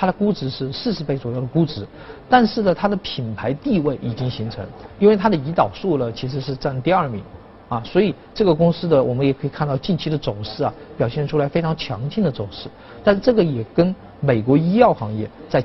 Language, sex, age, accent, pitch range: Chinese, male, 50-69, native, 120-180 Hz